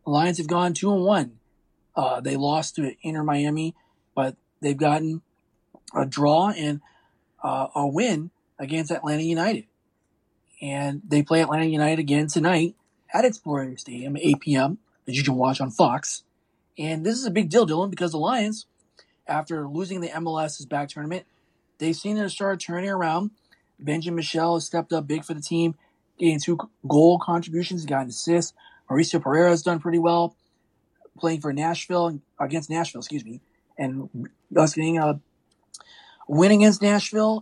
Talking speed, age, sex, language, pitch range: 165 wpm, 20-39, male, English, 150-180 Hz